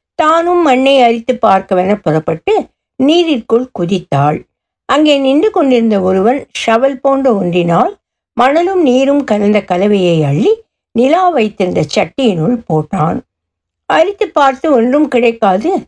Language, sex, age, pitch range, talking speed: Tamil, female, 60-79, 195-285 Hz, 100 wpm